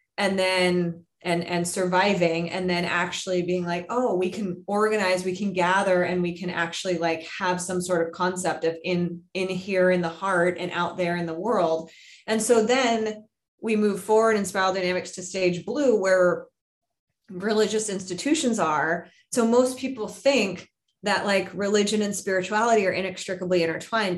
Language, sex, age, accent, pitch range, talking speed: English, female, 20-39, American, 180-220 Hz, 170 wpm